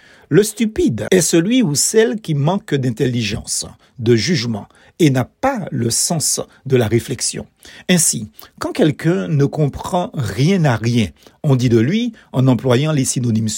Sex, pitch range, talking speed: male, 130-195 Hz, 155 wpm